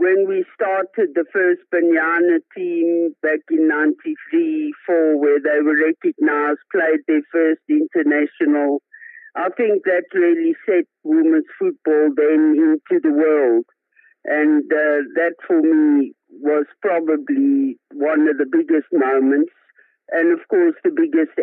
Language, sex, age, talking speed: English, male, 60-79, 130 wpm